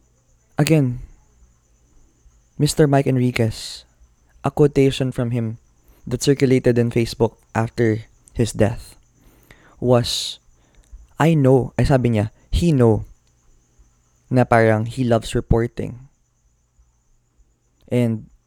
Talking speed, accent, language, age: 90 wpm, native, Filipino, 20-39